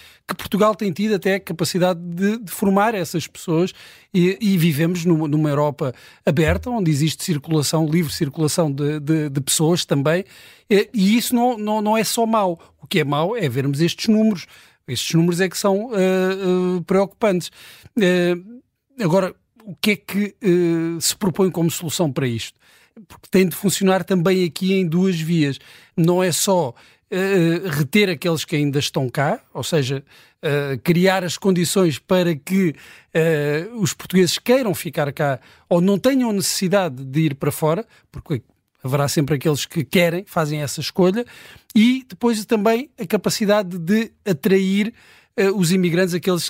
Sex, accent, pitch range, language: male, Portuguese, 160-200 Hz, Portuguese